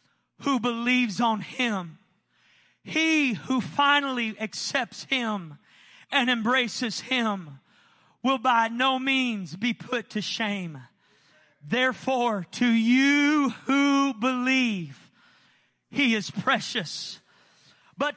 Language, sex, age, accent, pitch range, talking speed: English, male, 40-59, American, 225-275 Hz, 95 wpm